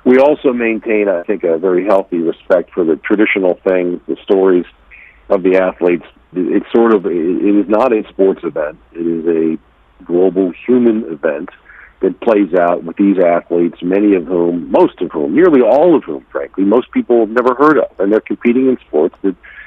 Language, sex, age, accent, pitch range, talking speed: English, male, 50-69, American, 90-110 Hz, 185 wpm